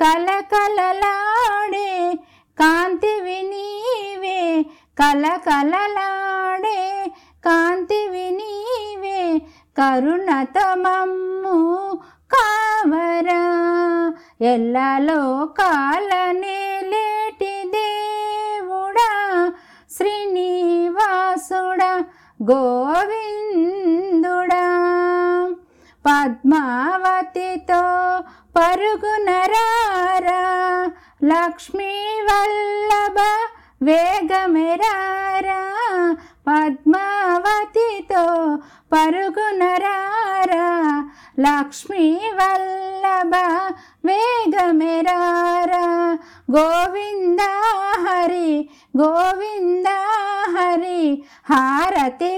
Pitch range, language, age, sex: 335-395 Hz, Telugu, 50-69, female